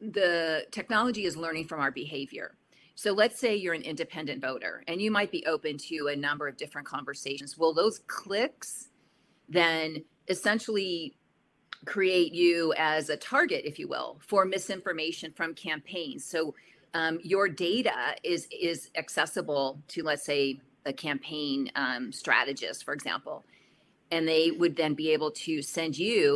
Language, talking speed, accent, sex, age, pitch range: English, 155 wpm, American, female, 40-59, 150-195 Hz